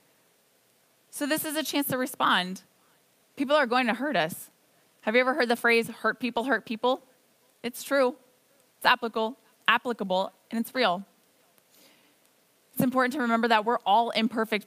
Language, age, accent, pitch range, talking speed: English, 20-39, American, 205-250 Hz, 160 wpm